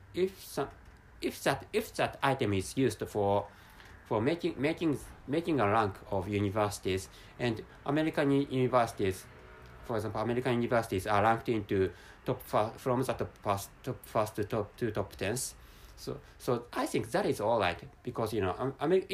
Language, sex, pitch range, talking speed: English, male, 100-135 Hz, 175 wpm